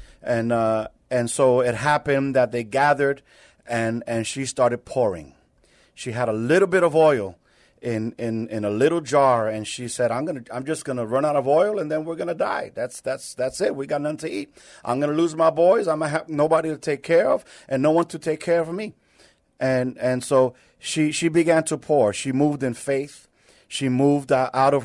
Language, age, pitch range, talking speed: English, 40-59, 120-150 Hz, 230 wpm